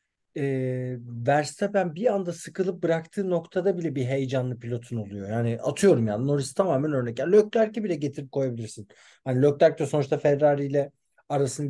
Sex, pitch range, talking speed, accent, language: male, 120-190 Hz, 155 wpm, native, Turkish